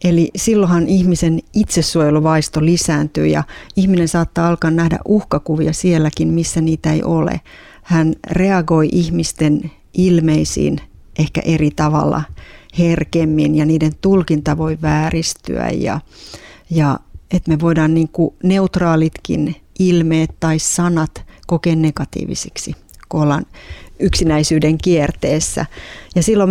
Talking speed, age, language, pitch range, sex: 105 wpm, 30-49, Finnish, 155-170 Hz, female